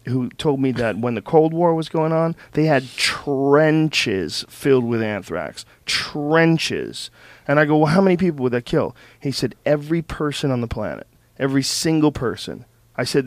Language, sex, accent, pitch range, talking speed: English, male, American, 120-155 Hz, 180 wpm